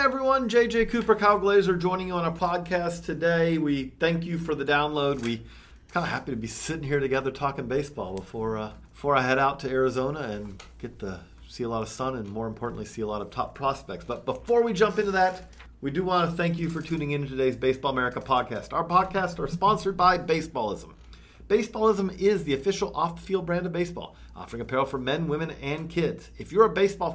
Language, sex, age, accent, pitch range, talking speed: English, male, 40-59, American, 135-185 Hz, 215 wpm